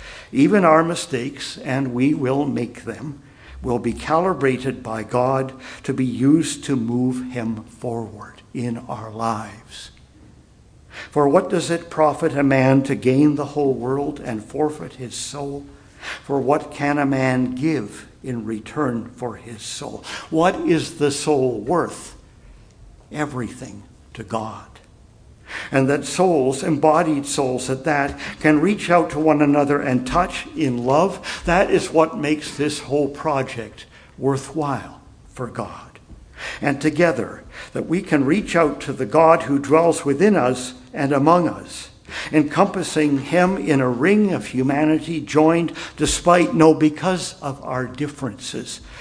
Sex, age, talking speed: male, 60-79, 140 wpm